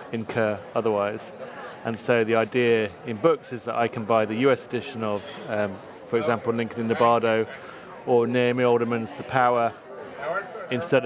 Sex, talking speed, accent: male, 165 wpm, British